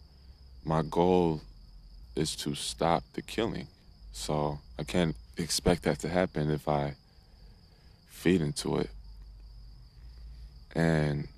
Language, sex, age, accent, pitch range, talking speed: English, male, 20-39, American, 75-90 Hz, 105 wpm